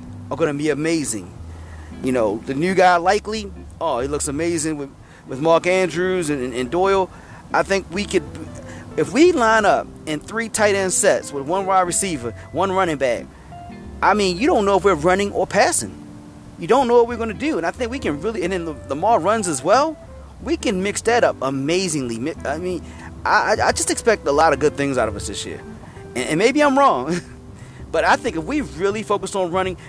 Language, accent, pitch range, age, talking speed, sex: English, American, 150-225 Hz, 30-49, 220 wpm, male